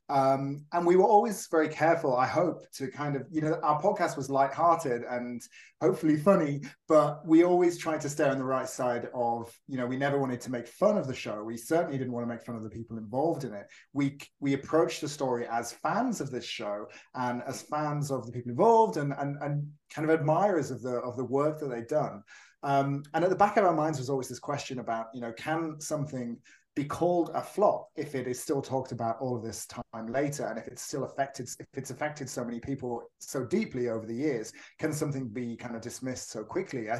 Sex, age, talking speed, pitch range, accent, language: male, 30-49, 235 wpm, 125-160 Hz, British, English